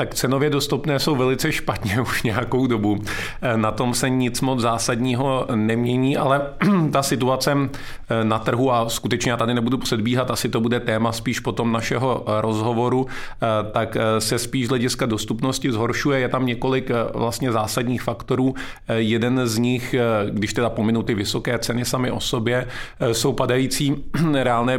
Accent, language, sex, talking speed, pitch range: native, Czech, male, 150 wpm, 115-130 Hz